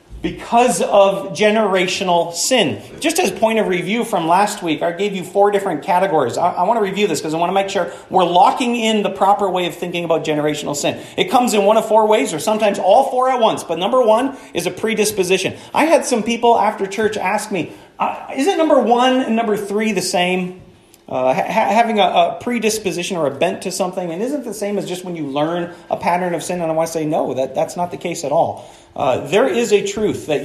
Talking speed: 230 wpm